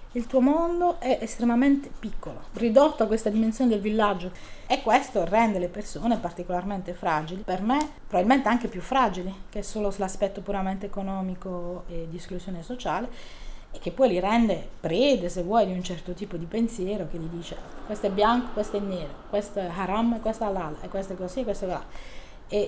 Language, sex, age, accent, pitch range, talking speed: Italian, female, 30-49, native, 185-220 Hz, 190 wpm